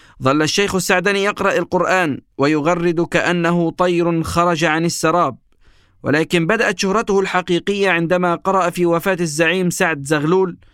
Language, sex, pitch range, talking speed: Arabic, male, 140-180 Hz, 125 wpm